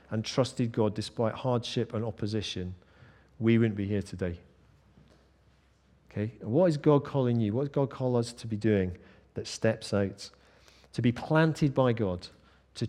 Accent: British